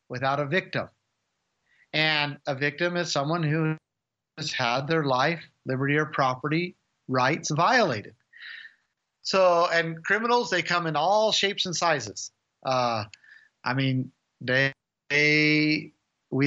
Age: 50-69